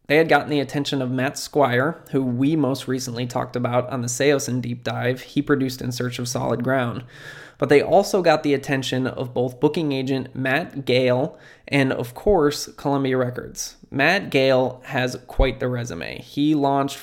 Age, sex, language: 20-39, male, English